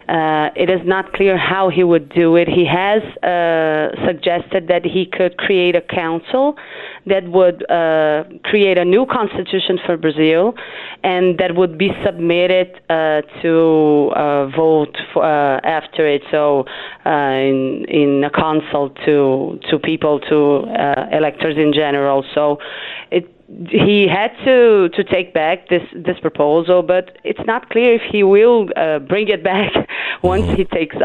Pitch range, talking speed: 160-200 Hz, 155 wpm